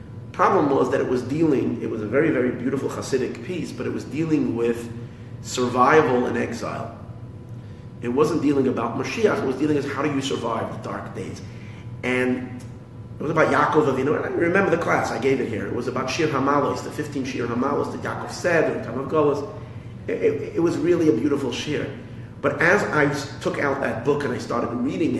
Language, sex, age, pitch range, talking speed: English, male, 30-49, 120-140 Hz, 210 wpm